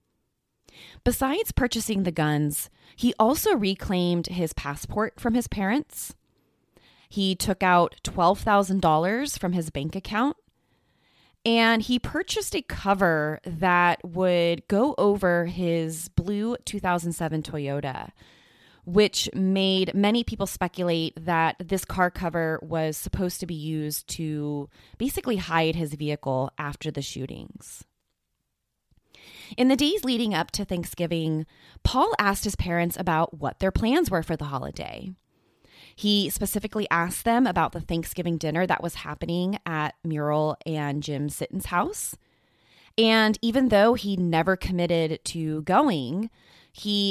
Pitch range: 160-210 Hz